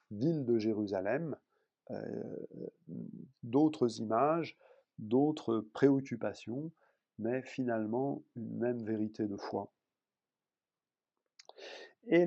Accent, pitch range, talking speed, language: French, 115-160 Hz, 80 wpm, French